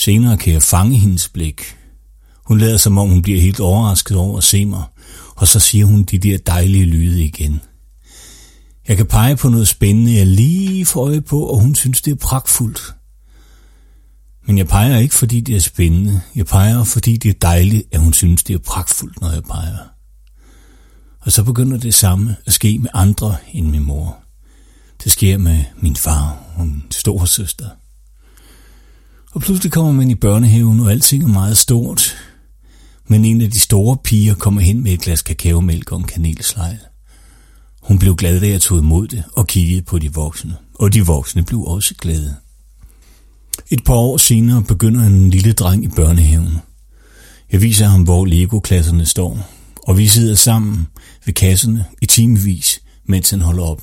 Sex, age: male, 60-79